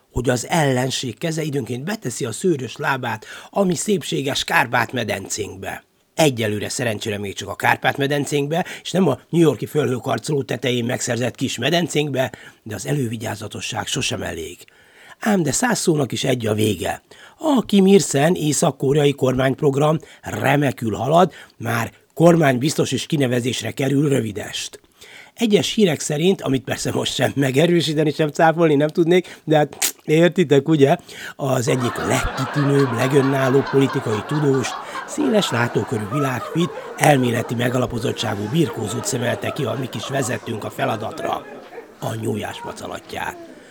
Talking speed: 125 wpm